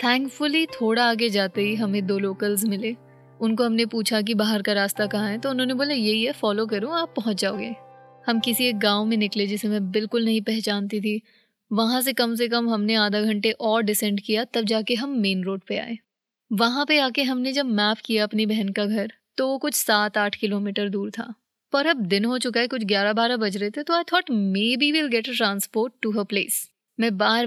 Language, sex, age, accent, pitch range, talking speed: Hindi, female, 20-39, native, 210-240 Hz, 225 wpm